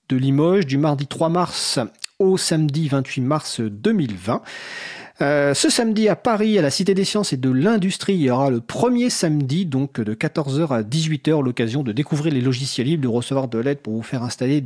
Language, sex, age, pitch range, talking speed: French, male, 40-59, 135-190 Hz, 200 wpm